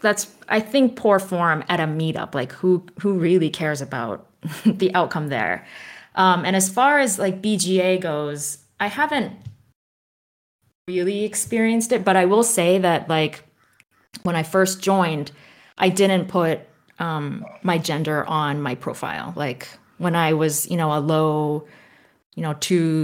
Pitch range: 150-180 Hz